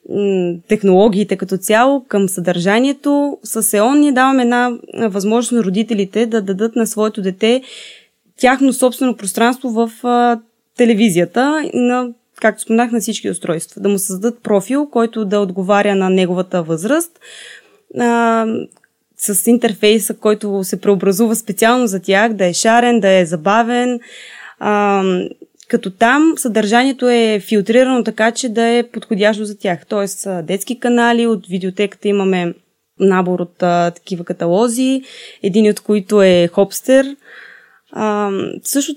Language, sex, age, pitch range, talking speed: Bulgarian, female, 20-39, 200-245 Hz, 130 wpm